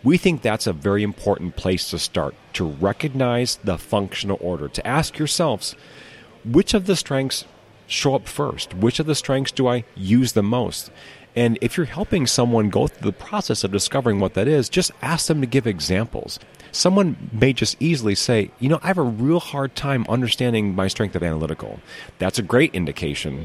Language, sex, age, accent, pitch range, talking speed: English, male, 40-59, American, 85-120 Hz, 190 wpm